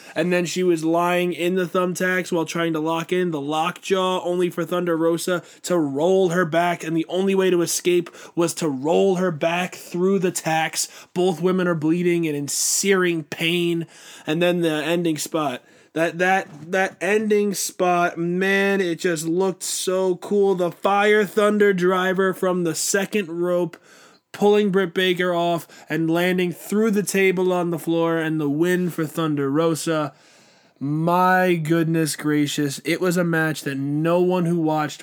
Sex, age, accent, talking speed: male, 20-39, American, 170 wpm